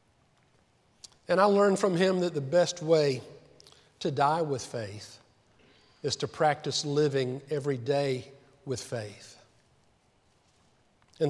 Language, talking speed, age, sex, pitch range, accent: English, 115 wpm, 50-69, male, 130-205 Hz, American